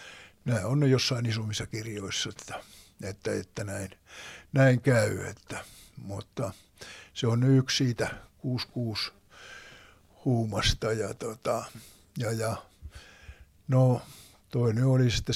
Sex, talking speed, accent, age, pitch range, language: male, 110 wpm, native, 60-79, 110-125 Hz, Finnish